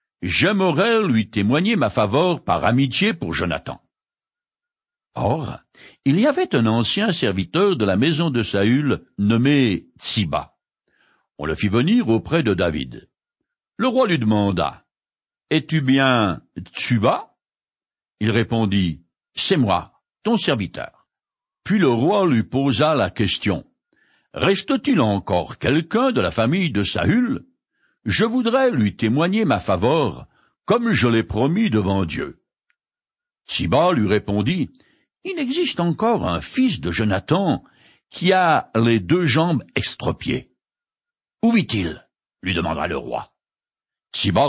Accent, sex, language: French, male, French